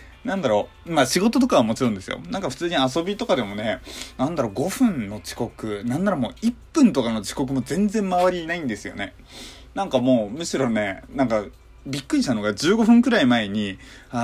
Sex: male